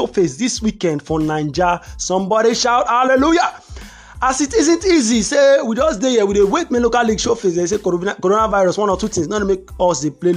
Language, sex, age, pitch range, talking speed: English, male, 30-49, 165-220 Hz, 205 wpm